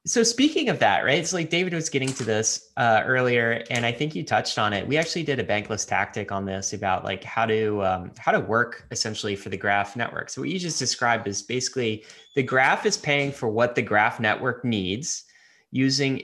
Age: 20-39